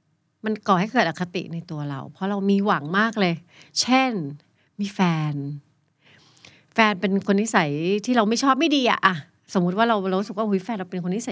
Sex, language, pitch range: female, Thai, 165-230 Hz